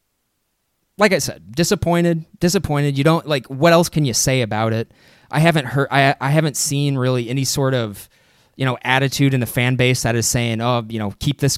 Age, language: 20-39, English